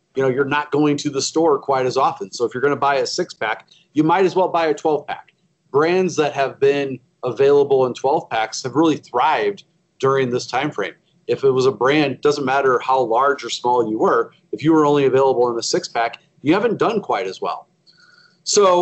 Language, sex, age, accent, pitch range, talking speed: English, male, 40-59, American, 130-170 Hz, 230 wpm